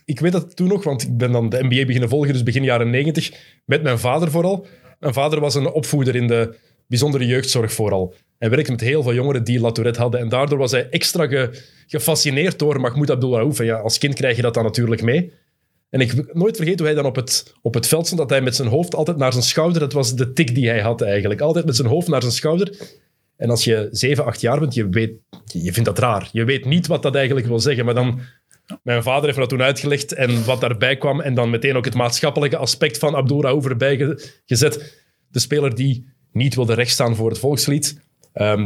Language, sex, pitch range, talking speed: Dutch, male, 120-150 Hz, 240 wpm